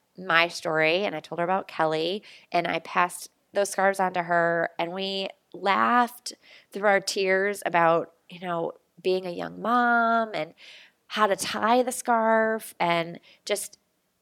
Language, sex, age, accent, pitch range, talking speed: English, female, 20-39, American, 170-225 Hz, 155 wpm